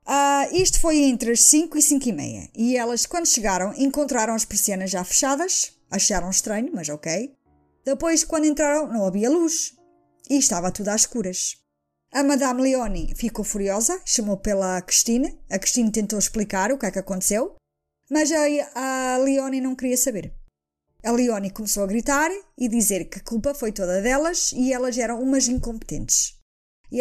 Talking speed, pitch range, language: 170 wpm, 215-295 Hz, Portuguese